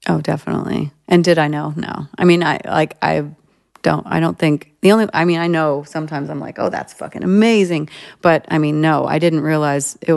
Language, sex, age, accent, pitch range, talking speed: English, female, 30-49, American, 150-180 Hz, 220 wpm